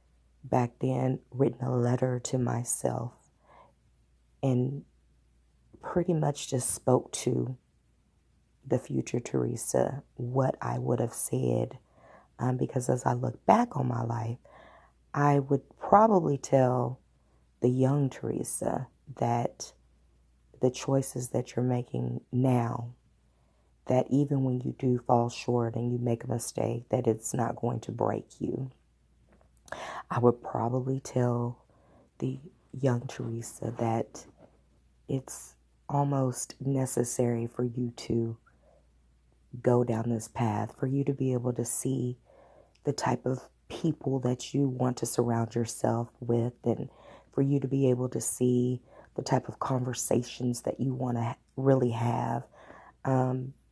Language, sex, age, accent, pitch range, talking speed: English, female, 40-59, American, 115-130 Hz, 130 wpm